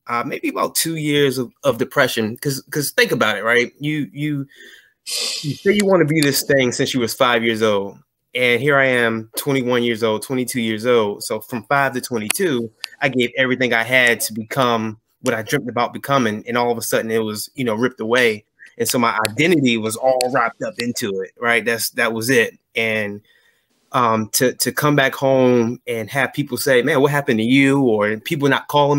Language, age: English, 20-39